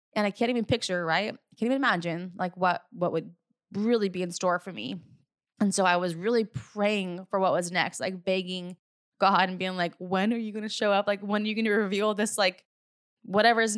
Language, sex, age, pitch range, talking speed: English, female, 20-39, 190-240 Hz, 235 wpm